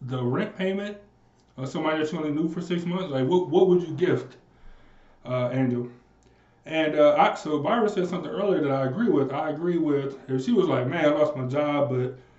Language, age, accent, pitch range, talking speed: English, 20-39, American, 130-175 Hz, 220 wpm